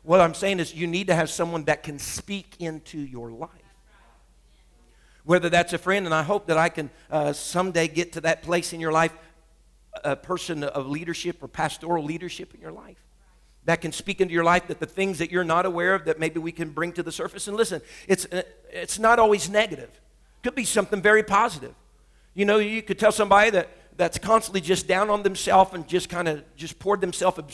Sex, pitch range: male, 165-210 Hz